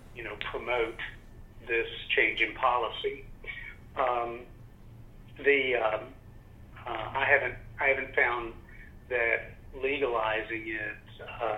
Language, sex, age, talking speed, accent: English, male, 50-69, 100 wpm, American